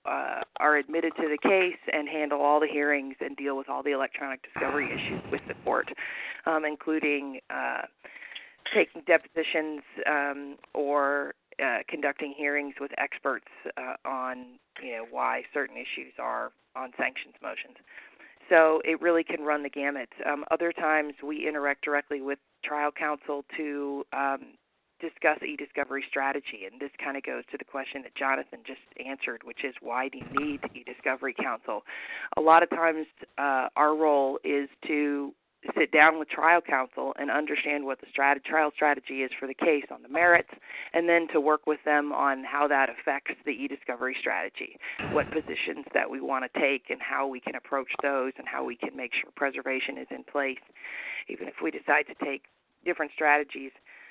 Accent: American